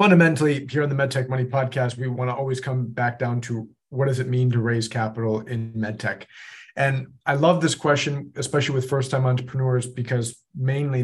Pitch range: 115-135 Hz